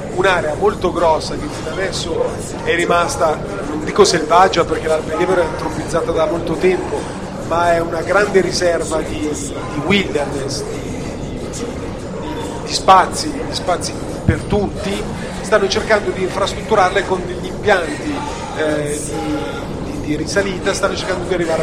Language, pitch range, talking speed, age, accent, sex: Italian, 160-190 Hz, 140 wpm, 40-59, native, male